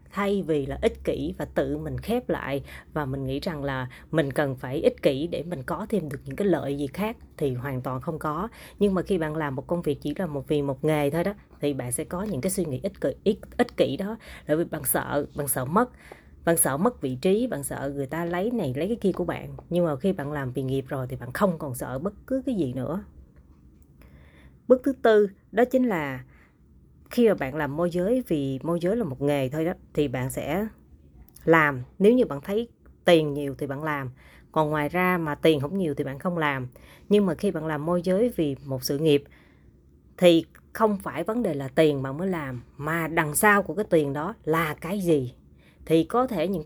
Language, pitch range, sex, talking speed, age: Vietnamese, 140-195 Hz, female, 240 wpm, 20-39